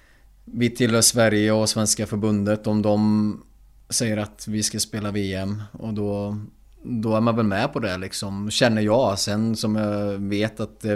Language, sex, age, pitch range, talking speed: Swedish, male, 20-39, 95-105 Hz, 175 wpm